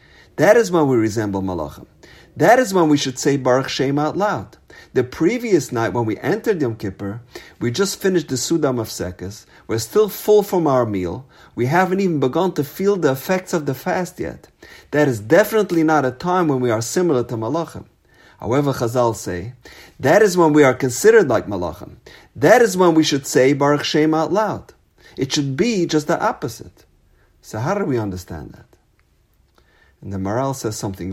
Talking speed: 190 wpm